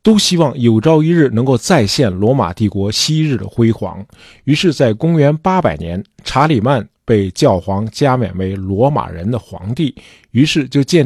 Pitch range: 100-155 Hz